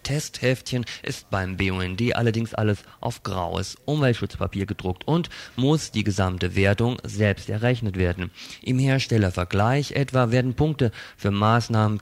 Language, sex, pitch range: German, male, 100-130 Hz